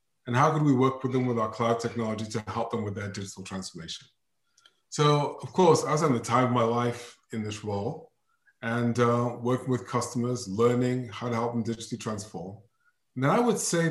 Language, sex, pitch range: English, male, 115-140 Hz